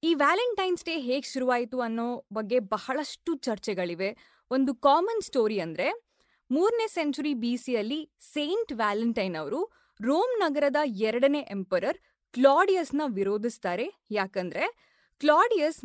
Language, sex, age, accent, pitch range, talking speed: Kannada, female, 20-39, native, 225-320 Hz, 110 wpm